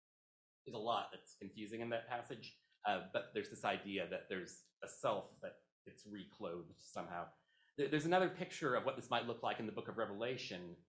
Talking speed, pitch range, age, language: 195 wpm, 105-150 Hz, 30-49, English